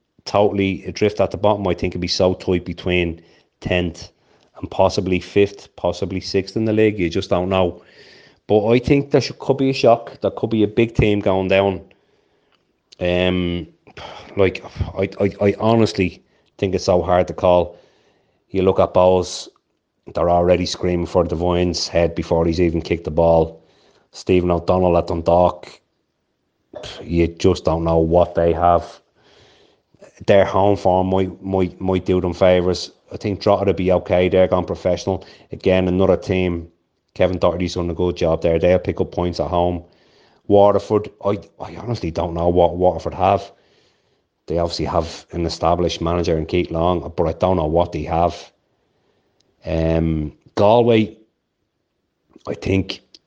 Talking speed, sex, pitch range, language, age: 160 wpm, male, 85-95 Hz, English, 30-49